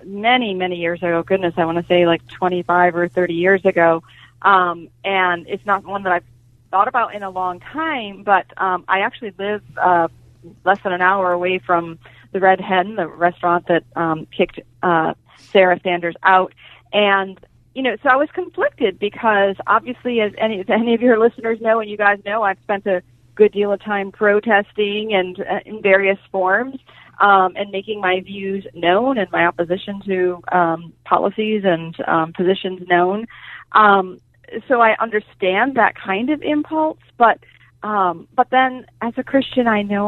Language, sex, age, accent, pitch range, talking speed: English, female, 40-59, American, 180-220 Hz, 180 wpm